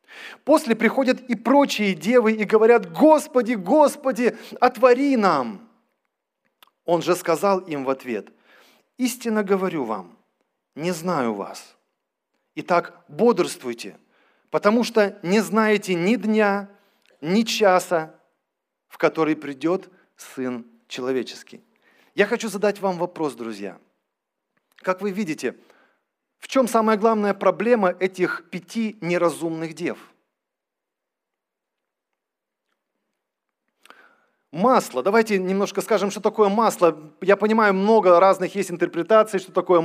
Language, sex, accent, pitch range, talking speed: Russian, male, native, 175-235 Hz, 105 wpm